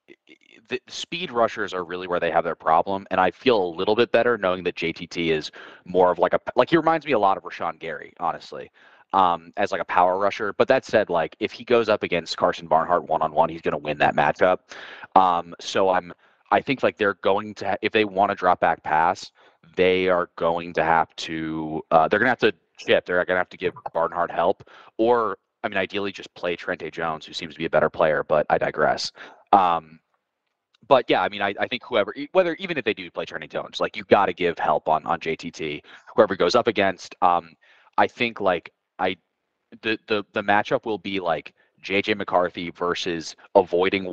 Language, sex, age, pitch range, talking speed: English, male, 30-49, 85-105 Hz, 220 wpm